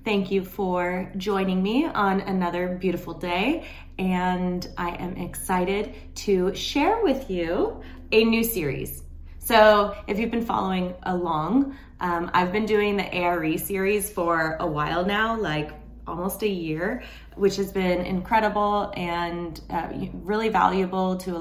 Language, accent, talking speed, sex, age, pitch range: English, American, 145 wpm, female, 20-39, 170-210 Hz